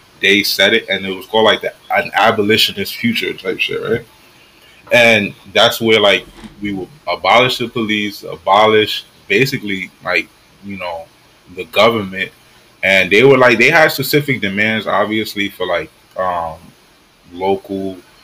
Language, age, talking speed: English, 20-39, 140 wpm